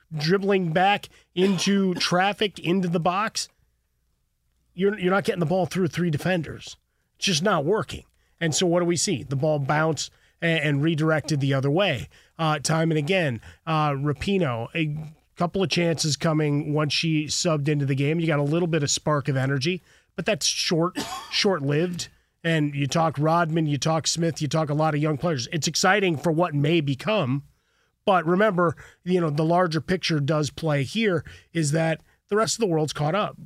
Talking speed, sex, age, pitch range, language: 185 wpm, male, 30-49, 150-180 Hz, English